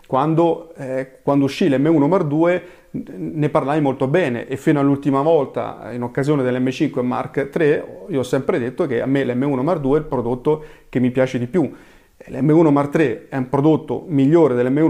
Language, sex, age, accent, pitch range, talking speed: Italian, male, 30-49, native, 125-150 Hz, 190 wpm